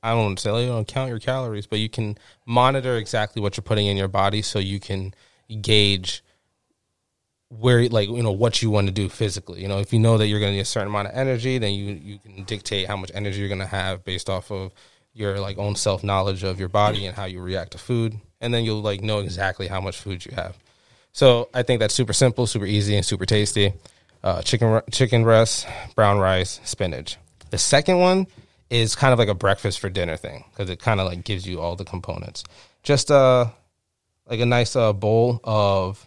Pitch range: 95-115 Hz